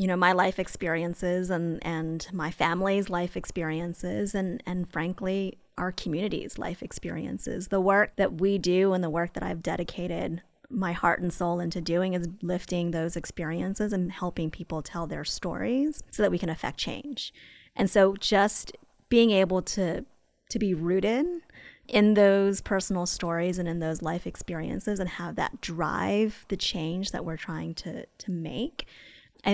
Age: 20-39